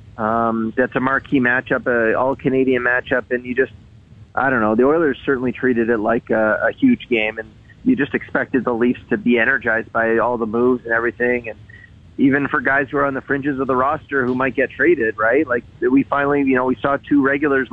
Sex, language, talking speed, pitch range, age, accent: male, English, 225 wpm, 120-145 Hz, 30-49, American